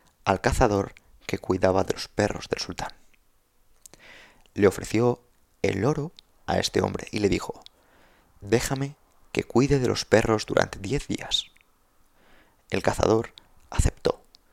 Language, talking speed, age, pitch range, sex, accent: Spanish, 130 wpm, 30-49, 95-120 Hz, male, Spanish